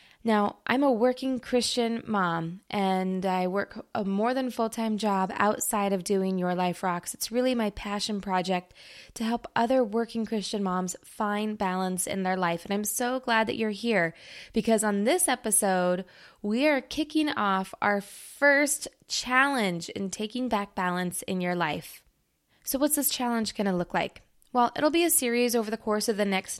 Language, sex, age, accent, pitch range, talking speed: English, female, 20-39, American, 195-245 Hz, 180 wpm